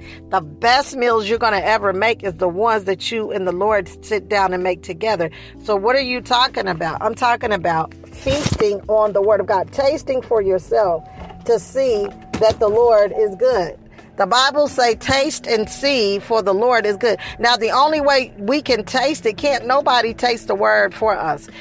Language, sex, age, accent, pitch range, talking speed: English, female, 40-59, American, 200-265 Hz, 200 wpm